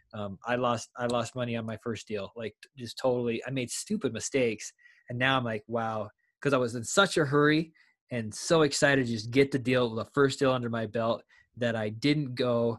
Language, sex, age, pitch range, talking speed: English, male, 20-39, 115-130 Hz, 220 wpm